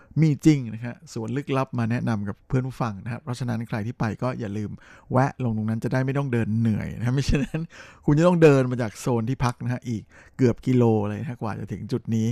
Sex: male